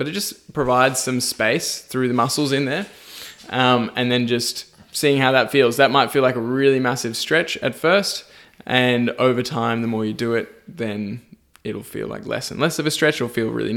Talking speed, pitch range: 220 wpm, 115-140 Hz